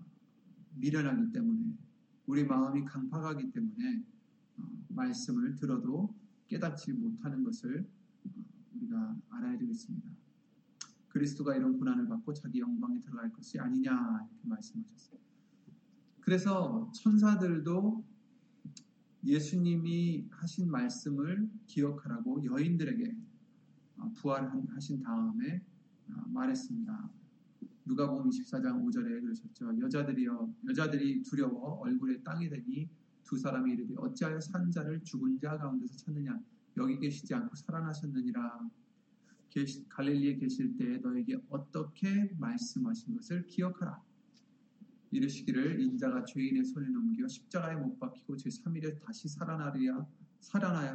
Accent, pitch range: native, 160-240 Hz